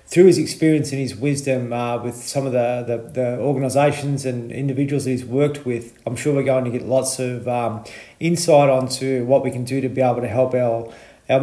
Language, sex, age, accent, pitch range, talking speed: English, male, 40-59, Australian, 120-140 Hz, 215 wpm